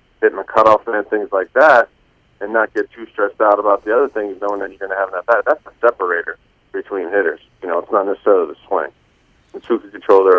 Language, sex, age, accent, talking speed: English, male, 40-59, American, 245 wpm